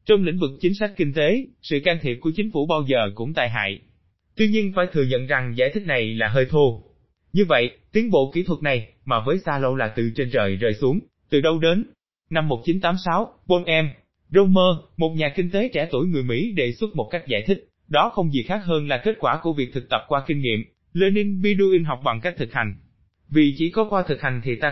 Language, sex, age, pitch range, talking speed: Vietnamese, male, 20-39, 125-180 Hz, 240 wpm